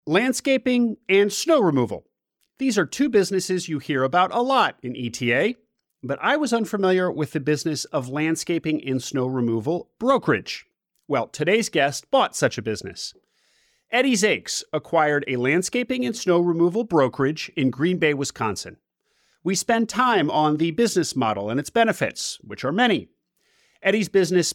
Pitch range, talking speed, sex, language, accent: 140-215 Hz, 155 wpm, male, English, American